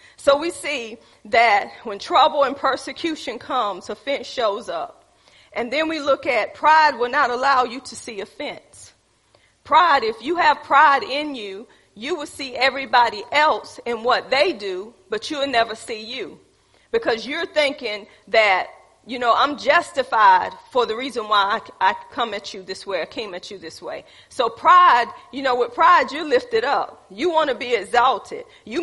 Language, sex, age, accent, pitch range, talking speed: English, female, 40-59, American, 240-315 Hz, 180 wpm